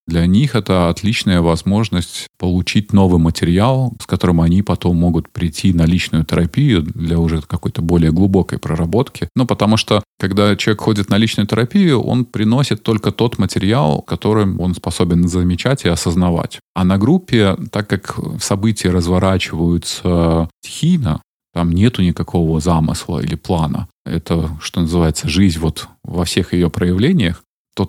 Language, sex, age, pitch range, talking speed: Russian, male, 30-49, 85-105 Hz, 140 wpm